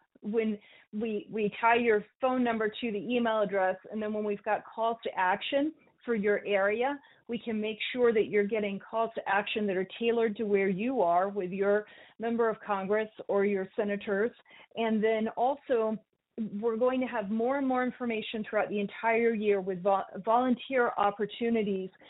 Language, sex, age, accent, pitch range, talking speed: English, female, 40-59, American, 200-240 Hz, 175 wpm